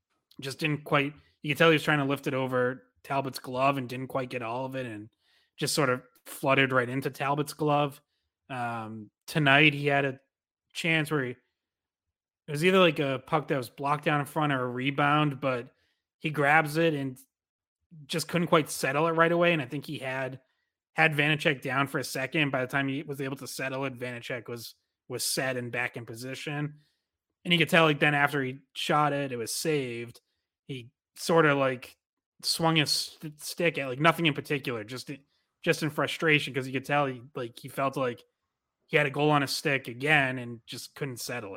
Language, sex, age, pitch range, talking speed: English, male, 30-49, 125-150 Hz, 210 wpm